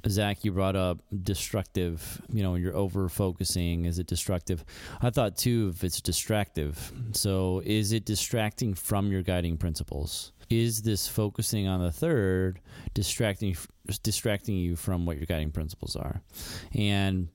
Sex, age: male, 30-49